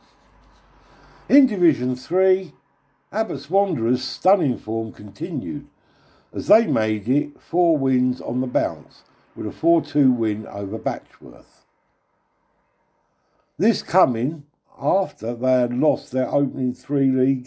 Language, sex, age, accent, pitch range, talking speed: English, male, 60-79, British, 115-150 Hz, 115 wpm